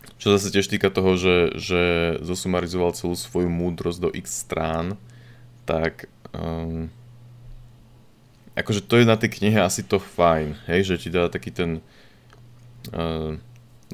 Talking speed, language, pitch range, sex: 140 wpm, Slovak, 85-115 Hz, male